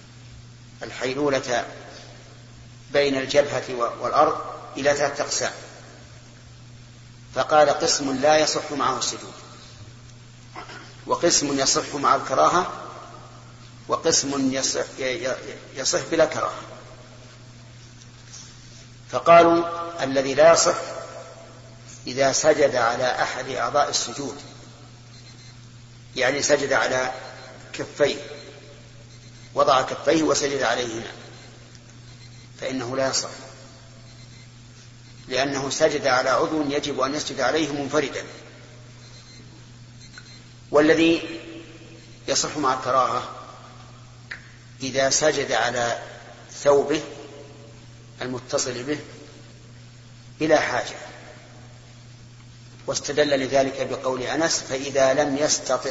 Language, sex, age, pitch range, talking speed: Arabic, male, 50-69, 120-140 Hz, 75 wpm